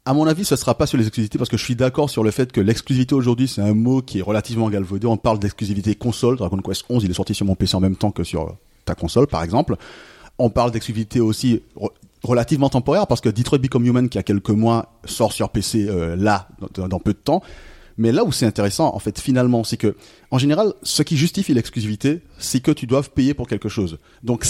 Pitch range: 105-135 Hz